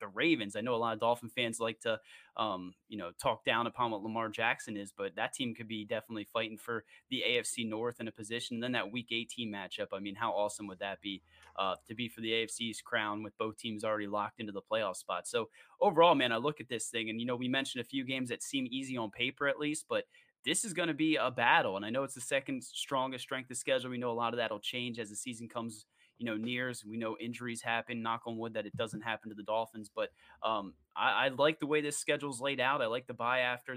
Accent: American